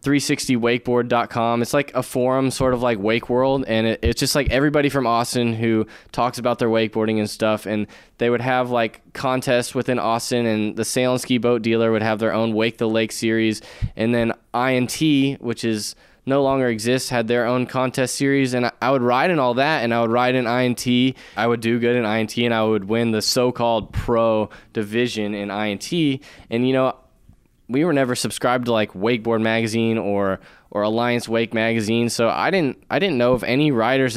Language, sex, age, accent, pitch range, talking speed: English, male, 10-29, American, 110-125 Hz, 200 wpm